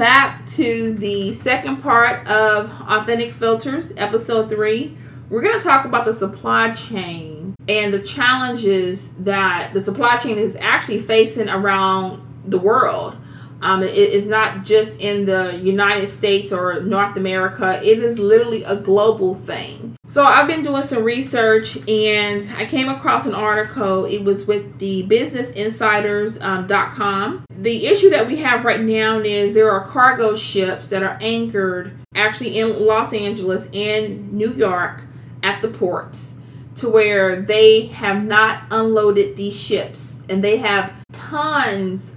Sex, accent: female, American